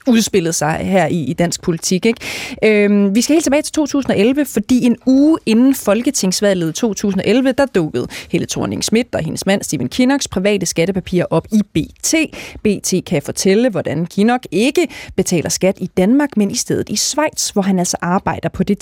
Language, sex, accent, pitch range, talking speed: Danish, female, native, 180-240 Hz, 180 wpm